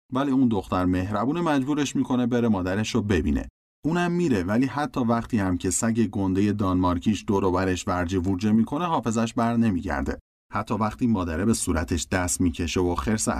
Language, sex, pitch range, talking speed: Persian, male, 90-125 Hz, 165 wpm